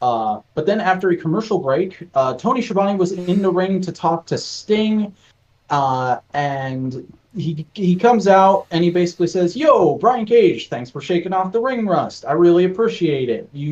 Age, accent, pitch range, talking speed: 30-49, American, 125-185 Hz, 190 wpm